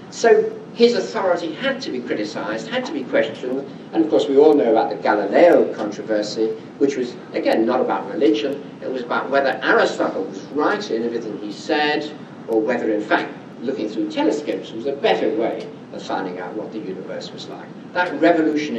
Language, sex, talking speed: English, male, 190 wpm